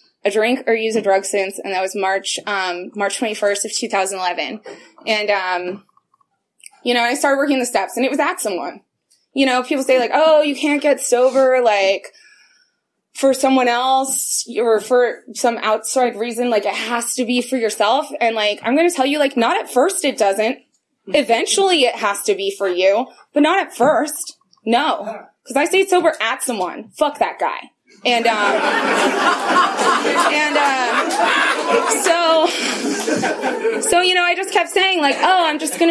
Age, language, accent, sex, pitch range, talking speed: 20-39, English, American, female, 225-285 Hz, 180 wpm